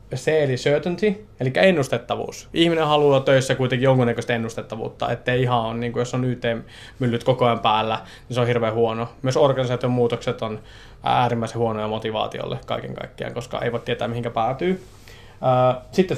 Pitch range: 115-135 Hz